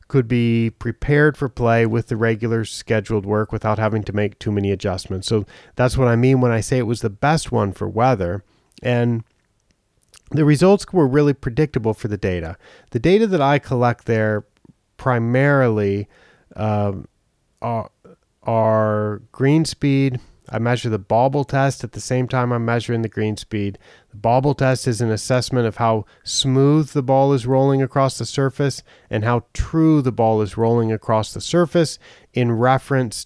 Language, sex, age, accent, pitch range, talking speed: English, male, 30-49, American, 105-130 Hz, 170 wpm